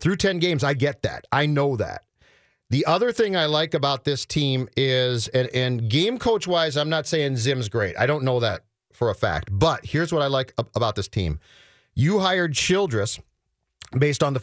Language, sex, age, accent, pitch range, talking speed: English, male, 40-59, American, 115-150 Hz, 200 wpm